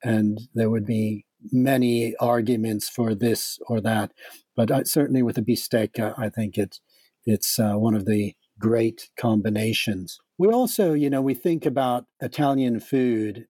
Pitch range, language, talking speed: 115-140 Hz, English, 150 wpm